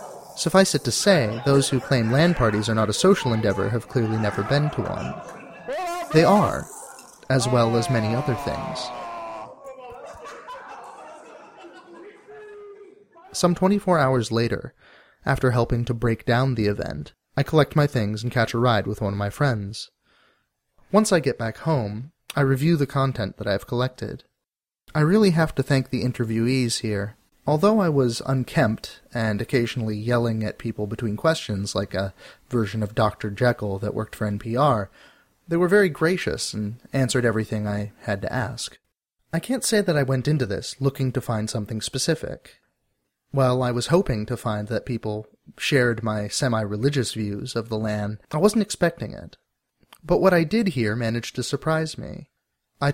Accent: American